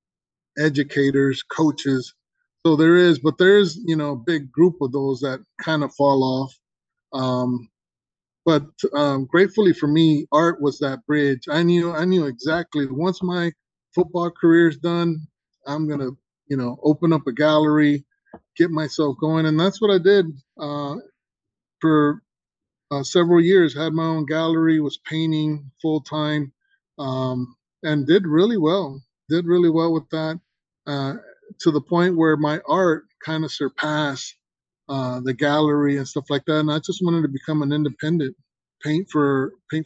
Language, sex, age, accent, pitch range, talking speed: English, male, 20-39, American, 140-165 Hz, 160 wpm